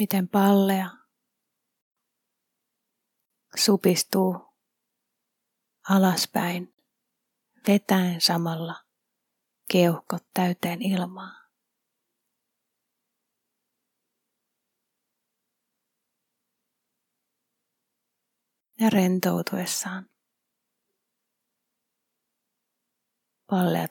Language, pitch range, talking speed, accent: Finnish, 185-235 Hz, 30 wpm, native